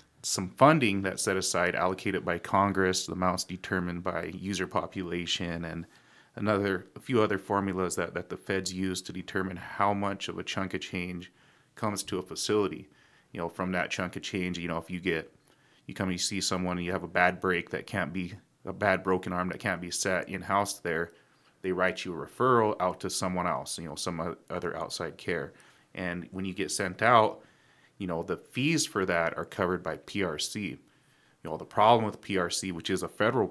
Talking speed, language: 210 wpm, English